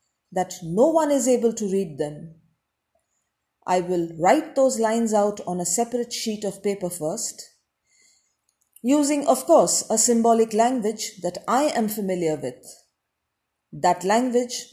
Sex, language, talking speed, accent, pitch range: female, English, 140 wpm, Indian, 185-250 Hz